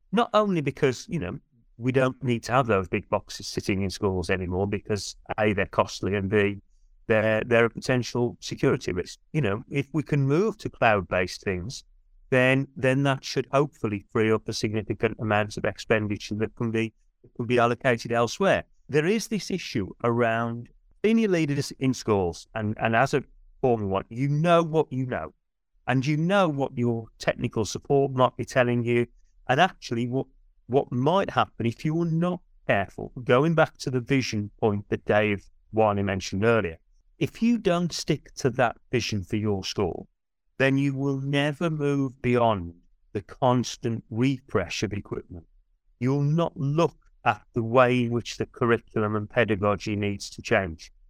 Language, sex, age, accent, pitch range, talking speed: English, male, 30-49, British, 105-140 Hz, 175 wpm